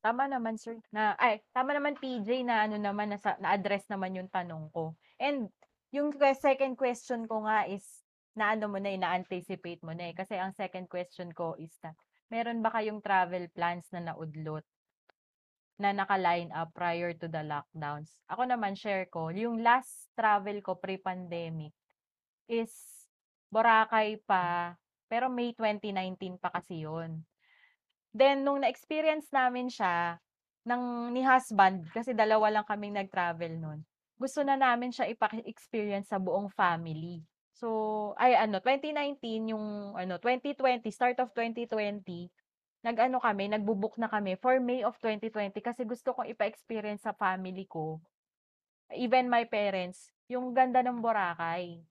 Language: Filipino